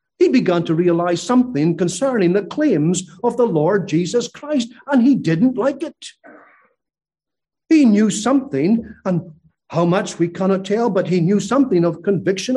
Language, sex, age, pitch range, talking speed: English, male, 50-69, 140-200 Hz, 160 wpm